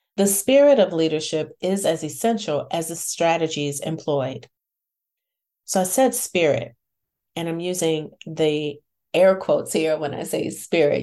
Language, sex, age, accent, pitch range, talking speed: English, female, 40-59, American, 155-210 Hz, 140 wpm